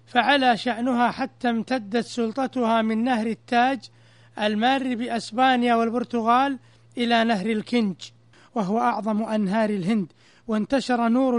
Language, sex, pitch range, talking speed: Arabic, male, 215-245 Hz, 105 wpm